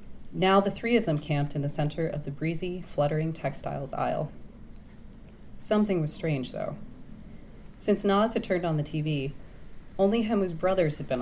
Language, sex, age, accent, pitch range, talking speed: English, female, 30-49, American, 145-195 Hz, 165 wpm